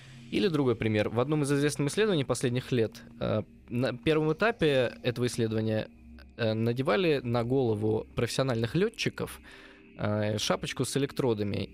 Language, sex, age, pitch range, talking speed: Russian, male, 20-39, 110-140 Hz, 135 wpm